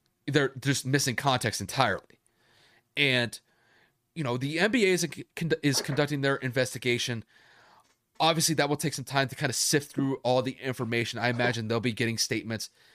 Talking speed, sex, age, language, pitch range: 165 wpm, male, 30-49, English, 120-170 Hz